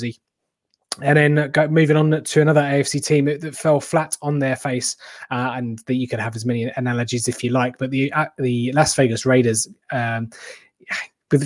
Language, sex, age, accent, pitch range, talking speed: English, male, 20-39, British, 125-150 Hz, 185 wpm